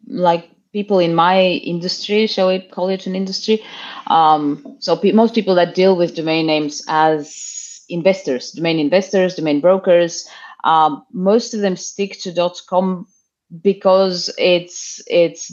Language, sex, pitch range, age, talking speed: English, female, 155-185 Hz, 30-49, 145 wpm